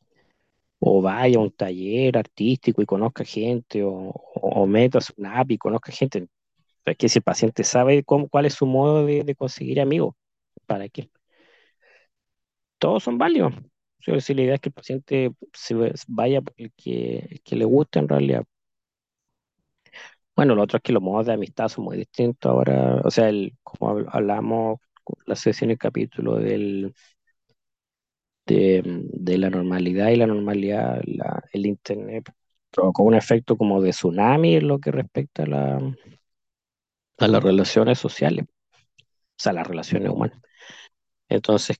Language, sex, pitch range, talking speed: Spanish, male, 95-125 Hz, 160 wpm